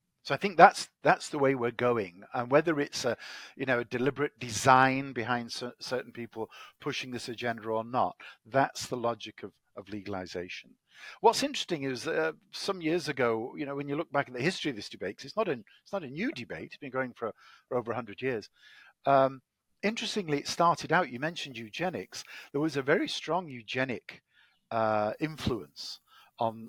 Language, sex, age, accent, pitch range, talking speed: English, male, 50-69, British, 110-145 Hz, 190 wpm